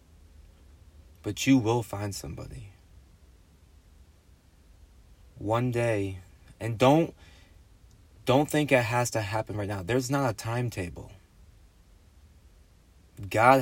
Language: English